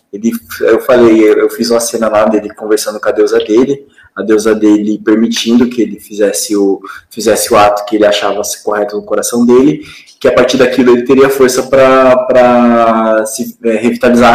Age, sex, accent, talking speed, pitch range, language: 20-39, male, Brazilian, 170 wpm, 110-145 Hz, Portuguese